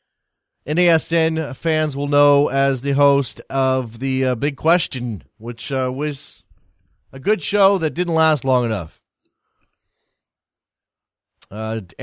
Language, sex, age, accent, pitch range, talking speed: English, male, 30-49, American, 125-155 Hz, 120 wpm